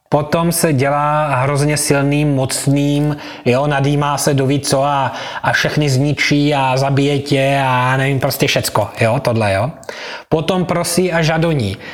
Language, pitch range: Slovak, 135-165 Hz